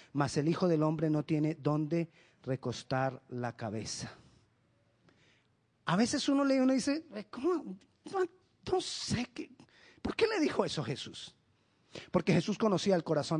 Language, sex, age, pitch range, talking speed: Spanish, male, 40-59, 135-205 Hz, 150 wpm